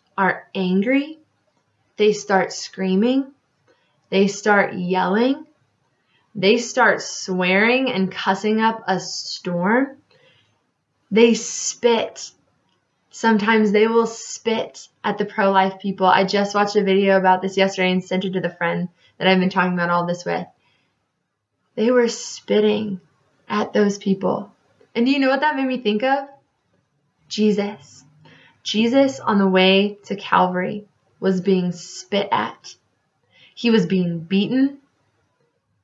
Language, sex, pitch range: English, female, 185-215 Hz